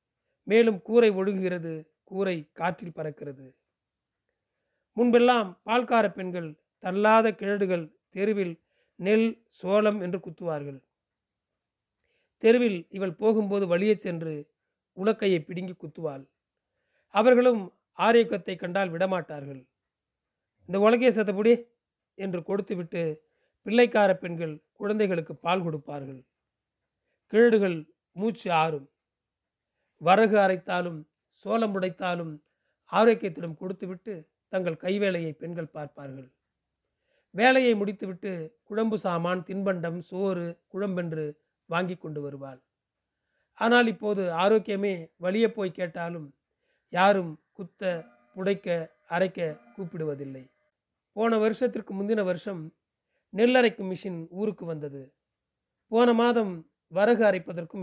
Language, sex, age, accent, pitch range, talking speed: Tamil, male, 40-59, native, 160-210 Hz, 90 wpm